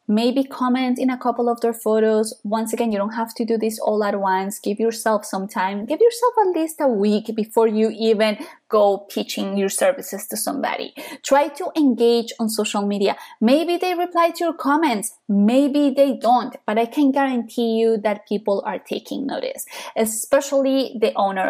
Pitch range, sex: 215-295 Hz, female